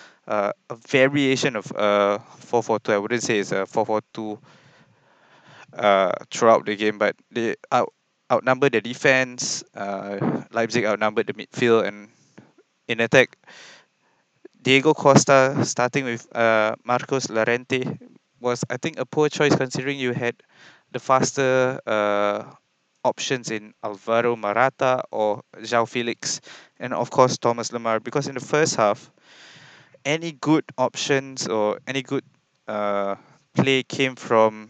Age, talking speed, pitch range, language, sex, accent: 20-39, 140 wpm, 110-130 Hz, English, male, Malaysian